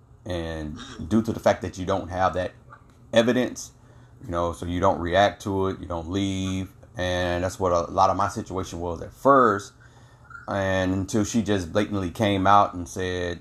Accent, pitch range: American, 95-115 Hz